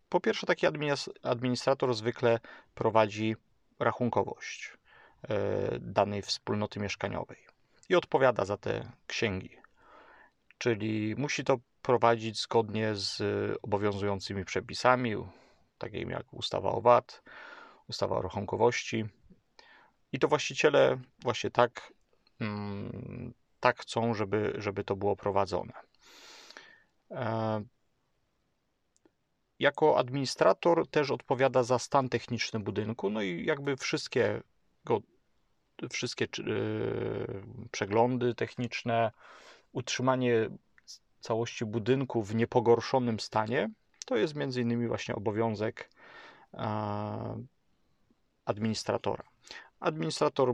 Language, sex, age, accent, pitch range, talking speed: Polish, male, 40-59, native, 110-130 Hz, 85 wpm